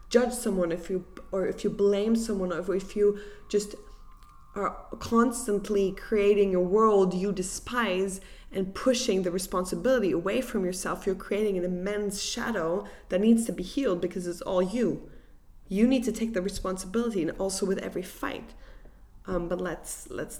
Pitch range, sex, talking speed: 180-215 Hz, female, 165 wpm